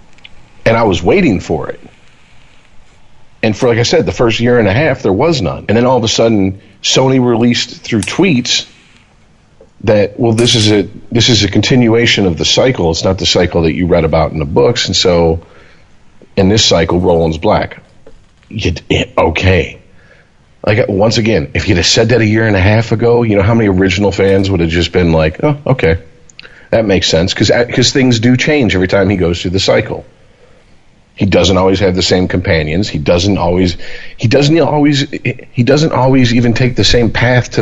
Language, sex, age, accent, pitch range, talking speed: English, male, 40-59, American, 90-120 Hz, 200 wpm